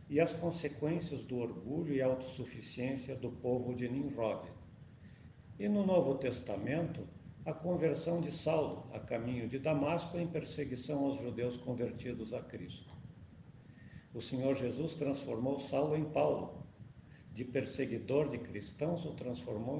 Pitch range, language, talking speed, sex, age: 125-160 Hz, Portuguese, 130 wpm, male, 60-79